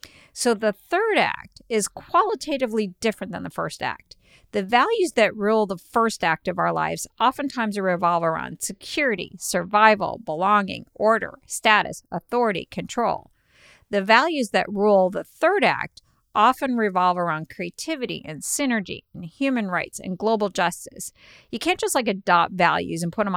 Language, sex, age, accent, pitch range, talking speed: English, female, 50-69, American, 180-230 Hz, 150 wpm